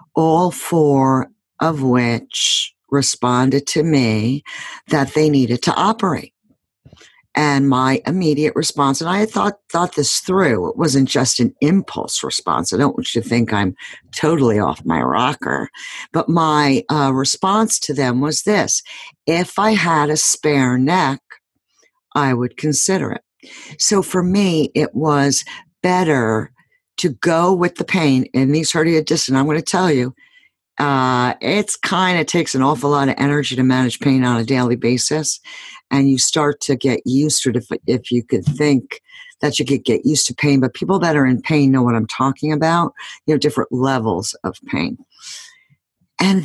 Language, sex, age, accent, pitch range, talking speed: English, female, 60-79, American, 130-165 Hz, 170 wpm